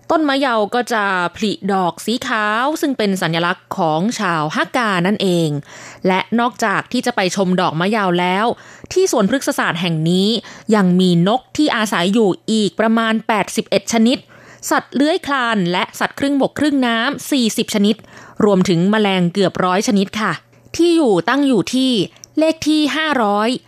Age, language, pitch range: 20-39, Thai, 195-260 Hz